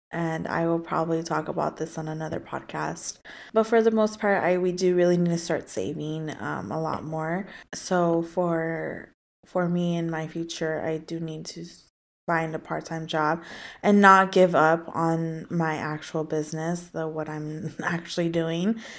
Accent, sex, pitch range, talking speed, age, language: American, female, 165-190 Hz, 175 wpm, 20-39, English